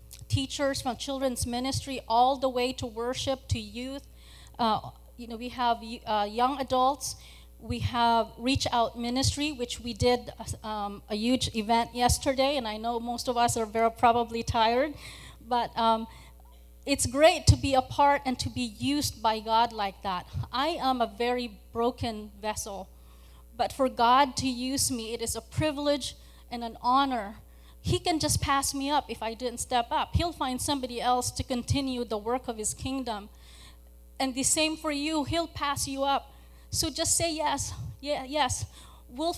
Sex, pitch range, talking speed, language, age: female, 230-275 Hz, 175 wpm, English, 30-49